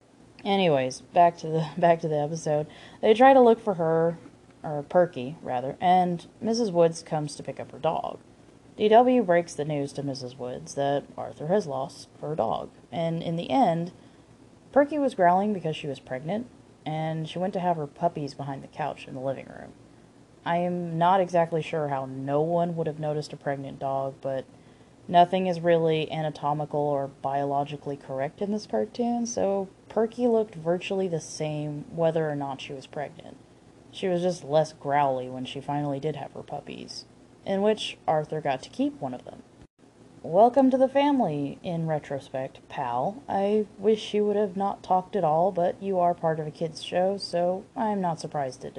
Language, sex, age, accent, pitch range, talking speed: English, female, 20-39, American, 140-190 Hz, 185 wpm